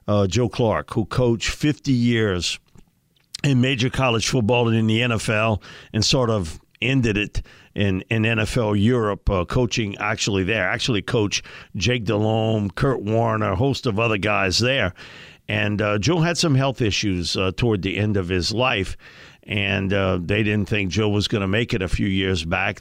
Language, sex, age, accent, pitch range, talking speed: English, male, 50-69, American, 95-120 Hz, 180 wpm